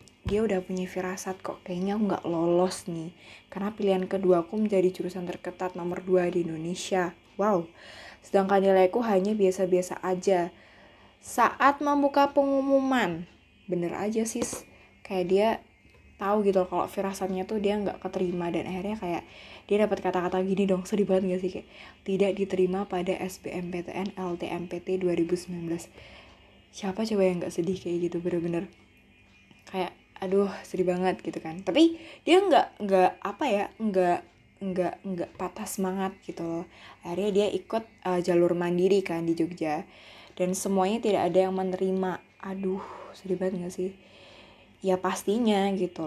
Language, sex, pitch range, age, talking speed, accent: Indonesian, female, 180-195 Hz, 20-39, 140 wpm, native